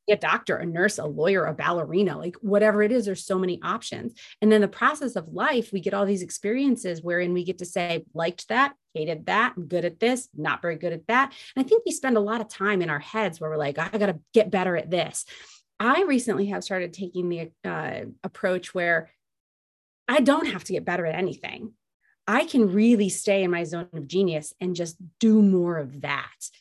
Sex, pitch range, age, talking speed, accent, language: female, 165-205 Hz, 30-49, 220 wpm, American, English